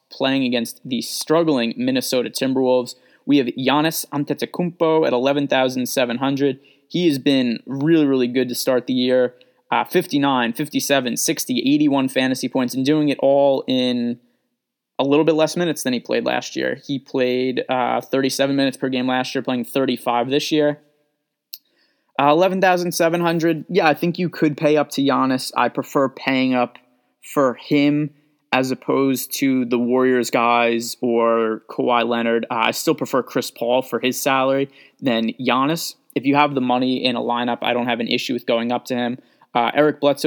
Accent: American